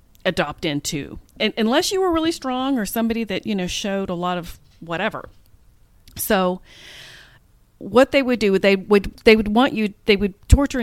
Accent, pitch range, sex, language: American, 165-215 Hz, female, English